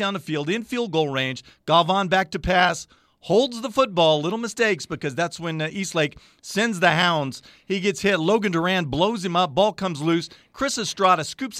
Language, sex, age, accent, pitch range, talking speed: English, male, 50-69, American, 145-190 Hz, 190 wpm